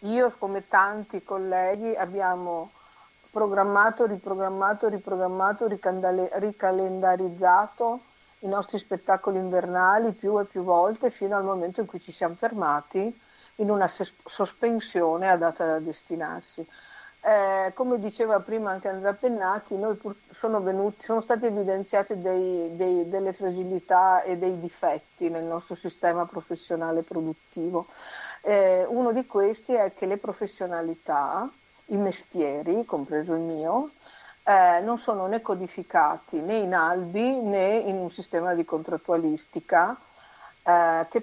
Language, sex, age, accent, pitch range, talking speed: Italian, female, 50-69, native, 165-205 Hz, 120 wpm